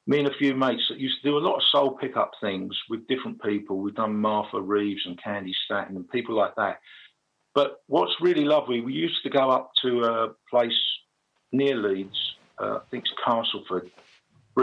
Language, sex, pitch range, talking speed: English, male, 105-130 Hz, 205 wpm